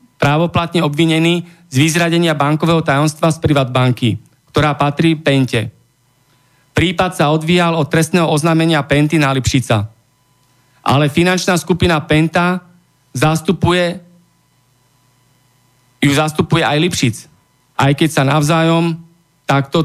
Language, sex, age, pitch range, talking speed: Slovak, male, 40-59, 135-170 Hz, 105 wpm